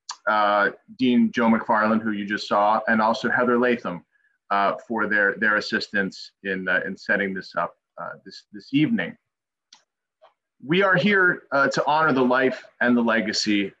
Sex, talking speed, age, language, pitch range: male, 165 wpm, 30-49, English, 105-125 Hz